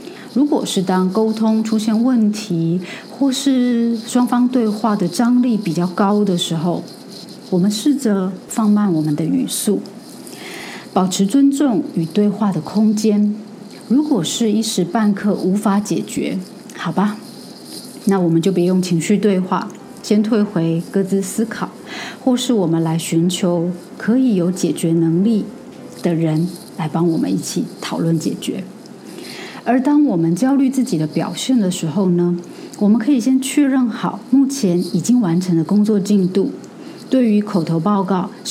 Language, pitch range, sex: Chinese, 180-240 Hz, female